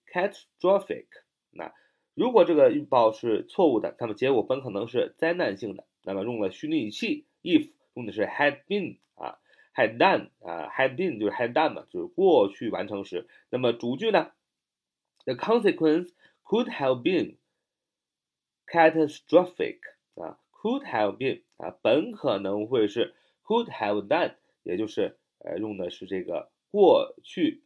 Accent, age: native, 30-49